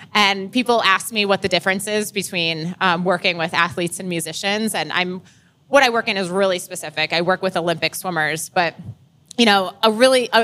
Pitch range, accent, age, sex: 180-230 Hz, American, 20-39, female